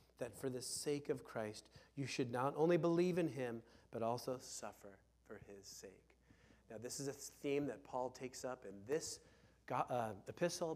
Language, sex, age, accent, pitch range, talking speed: English, male, 30-49, American, 115-140 Hz, 180 wpm